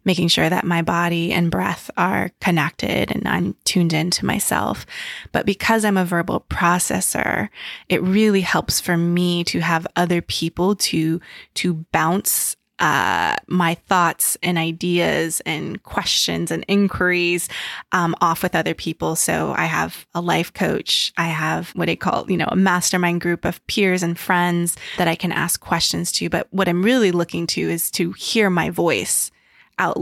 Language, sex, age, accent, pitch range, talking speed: English, female, 20-39, American, 170-190 Hz, 170 wpm